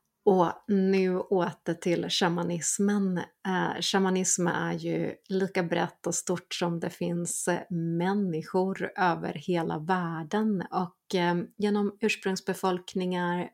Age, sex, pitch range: 30-49, female, 170-195 Hz